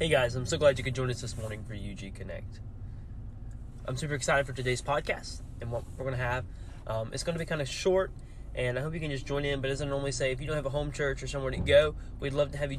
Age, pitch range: 20-39, 105-130 Hz